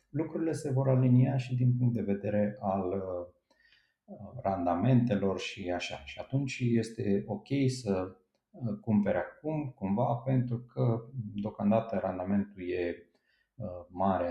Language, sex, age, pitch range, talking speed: Romanian, male, 40-59, 95-120 Hz, 120 wpm